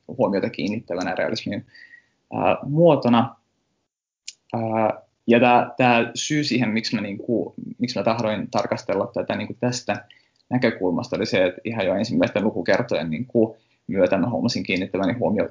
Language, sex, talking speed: Finnish, male, 130 wpm